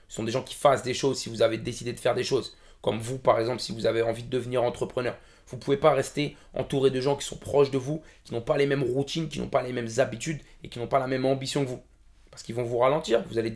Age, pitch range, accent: 20-39, 115-140 Hz, French